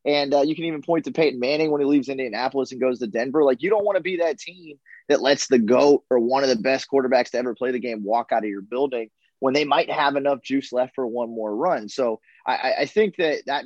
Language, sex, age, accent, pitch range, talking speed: English, male, 20-39, American, 125-150 Hz, 270 wpm